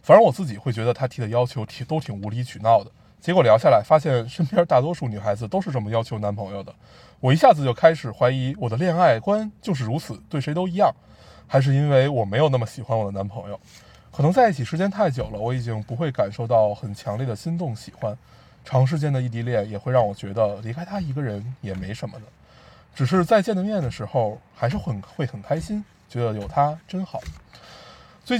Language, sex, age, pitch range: Chinese, male, 20-39, 115-155 Hz